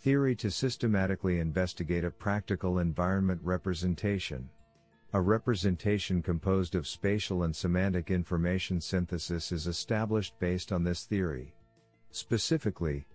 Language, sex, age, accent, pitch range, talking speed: English, male, 50-69, American, 85-100 Hz, 110 wpm